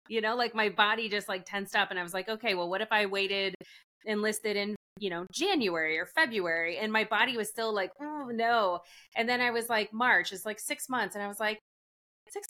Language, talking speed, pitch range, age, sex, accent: English, 235 wpm, 190-230 Hz, 30-49, female, American